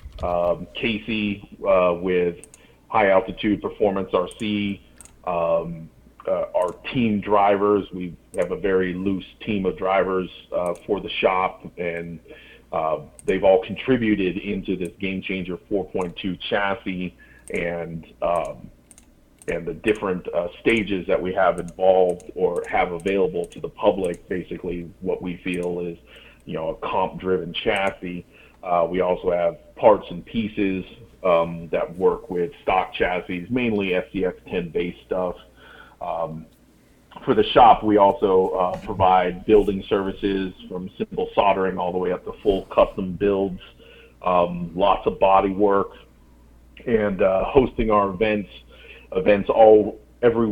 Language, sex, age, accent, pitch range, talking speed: English, male, 40-59, American, 90-105 Hz, 140 wpm